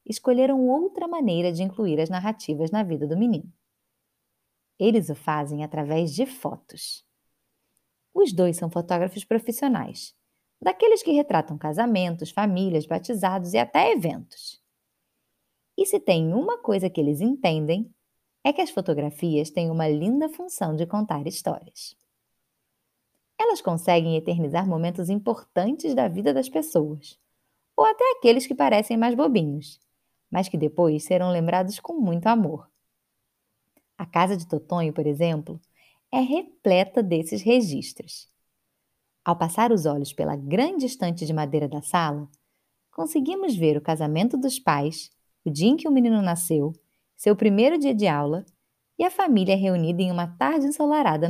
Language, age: Portuguese, 20-39